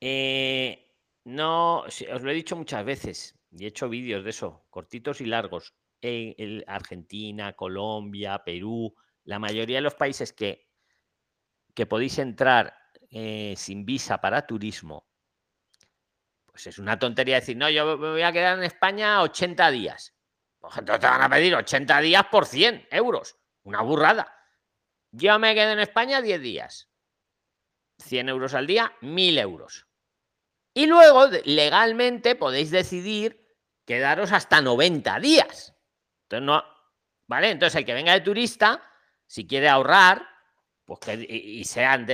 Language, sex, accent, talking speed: Spanish, male, Spanish, 145 wpm